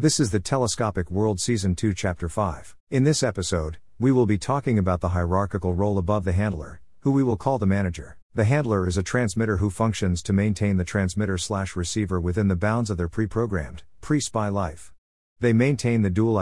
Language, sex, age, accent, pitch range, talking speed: English, male, 50-69, American, 90-115 Hz, 190 wpm